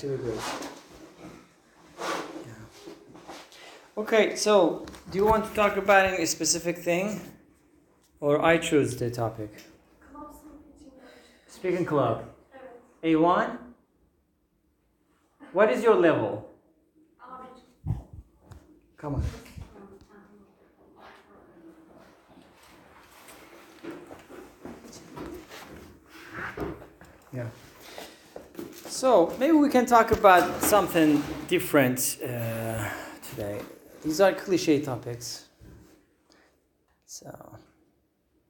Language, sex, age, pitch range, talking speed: English, male, 40-59, 120-190 Hz, 65 wpm